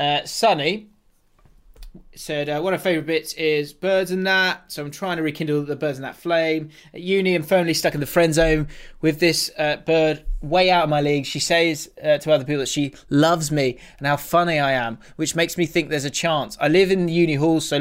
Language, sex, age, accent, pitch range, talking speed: English, male, 20-39, British, 145-175 Hz, 235 wpm